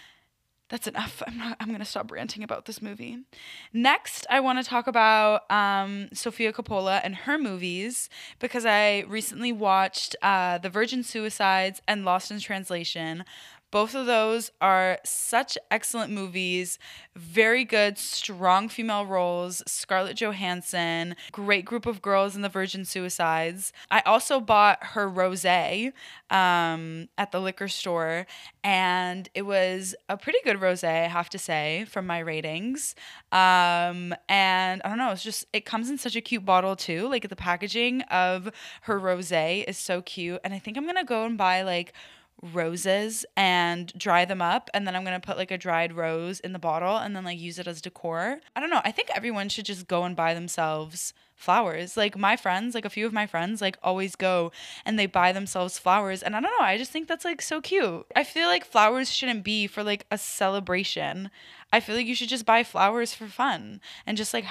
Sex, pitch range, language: female, 180-225 Hz, English